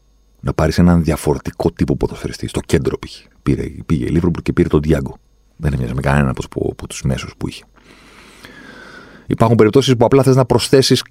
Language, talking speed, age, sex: Greek, 185 wpm, 40-59, male